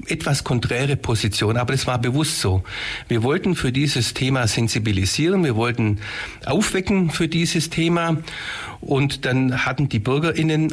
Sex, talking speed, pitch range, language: male, 140 wpm, 110-145 Hz, German